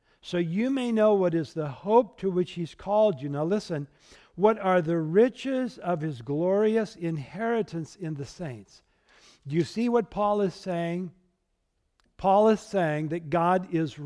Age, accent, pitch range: 60-79, American, 145-200 Hz